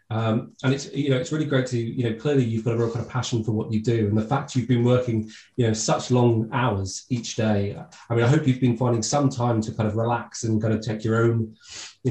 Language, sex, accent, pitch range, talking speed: English, male, British, 110-125 Hz, 280 wpm